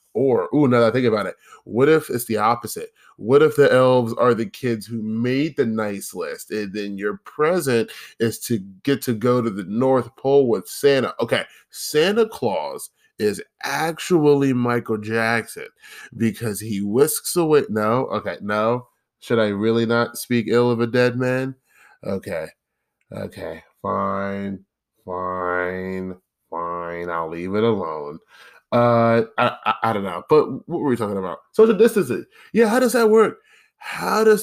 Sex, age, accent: male, 20-39, American